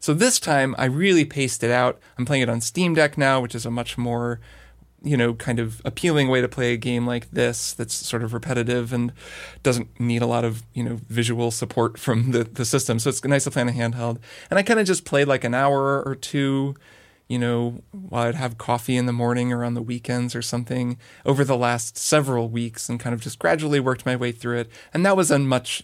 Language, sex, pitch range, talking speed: English, male, 120-140 Hz, 235 wpm